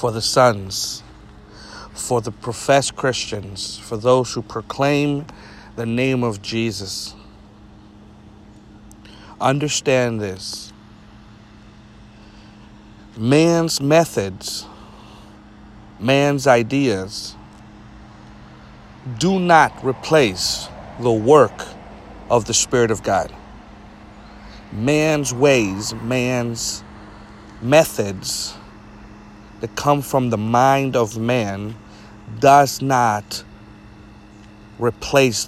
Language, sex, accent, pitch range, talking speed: English, male, American, 105-125 Hz, 75 wpm